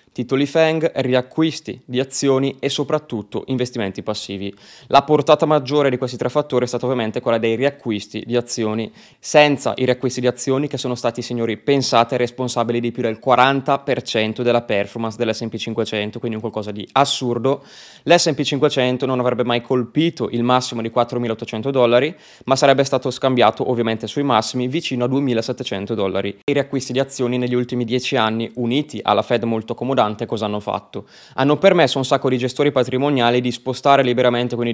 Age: 20-39